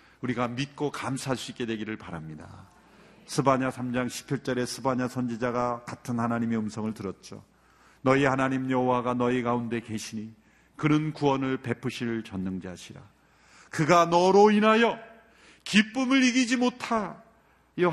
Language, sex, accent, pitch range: Korean, male, native, 115-160 Hz